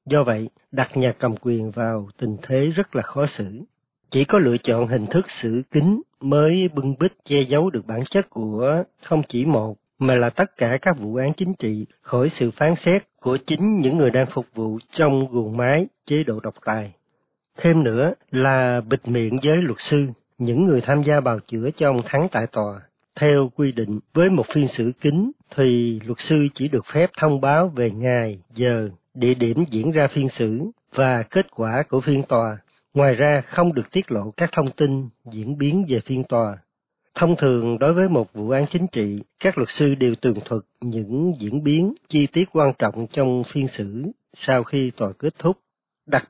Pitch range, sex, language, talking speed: 115-150 Hz, male, Vietnamese, 200 wpm